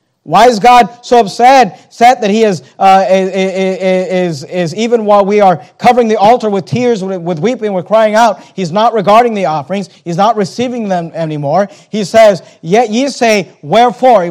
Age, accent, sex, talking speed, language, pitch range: 40-59, American, male, 185 wpm, English, 180-230 Hz